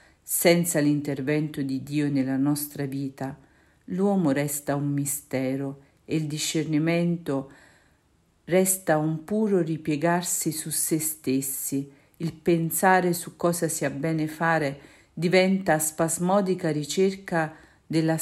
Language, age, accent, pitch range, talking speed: Italian, 50-69, native, 140-170 Hz, 105 wpm